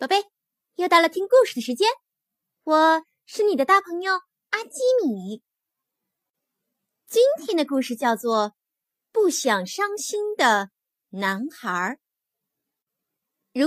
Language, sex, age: Chinese, female, 20-39